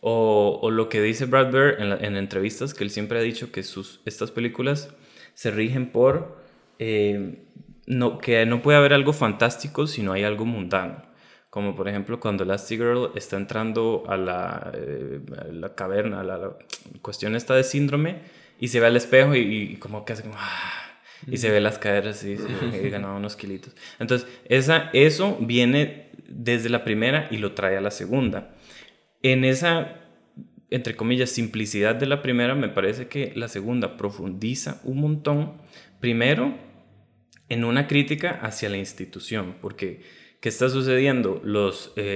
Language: Spanish